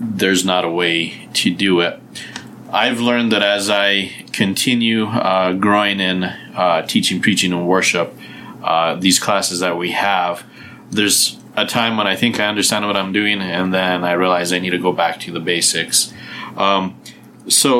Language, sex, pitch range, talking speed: English, male, 90-105 Hz, 175 wpm